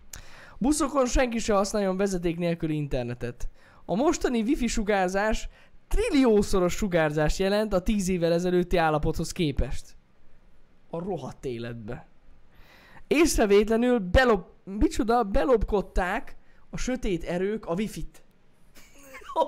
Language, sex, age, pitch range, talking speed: Hungarian, male, 10-29, 165-235 Hz, 100 wpm